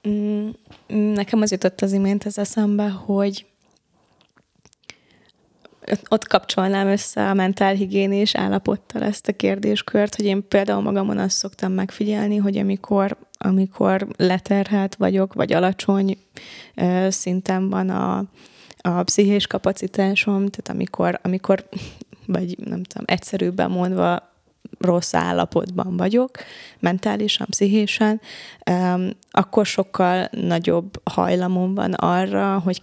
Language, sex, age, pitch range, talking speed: Hungarian, female, 20-39, 180-205 Hz, 105 wpm